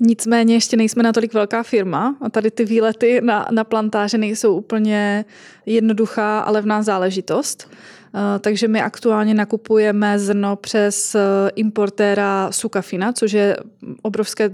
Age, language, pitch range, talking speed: 20-39, Czech, 200-220 Hz, 125 wpm